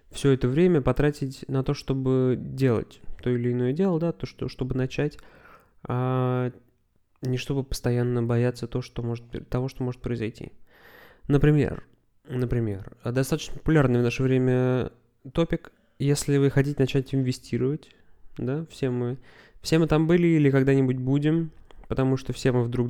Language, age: Russian, 20-39